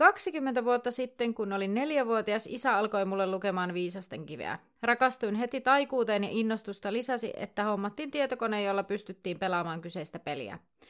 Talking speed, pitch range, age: 145 wpm, 195-245 Hz, 30-49